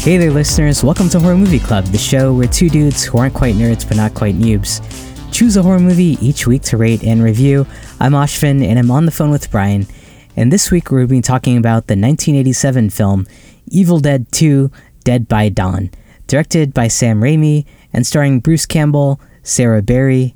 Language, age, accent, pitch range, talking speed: English, 10-29, American, 110-145 Hz, 200 wpm